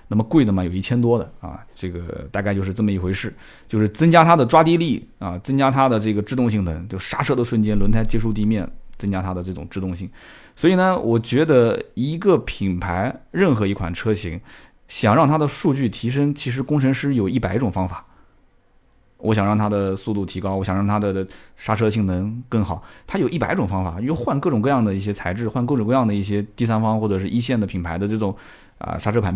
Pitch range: 100-165 Hz